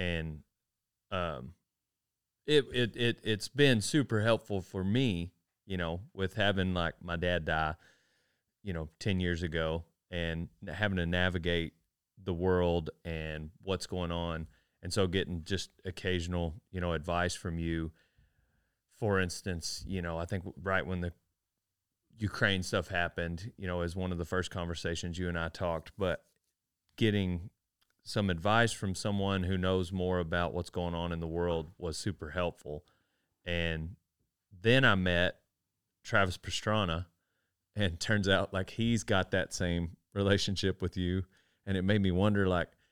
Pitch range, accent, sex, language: 85-105 Hz, American, male, English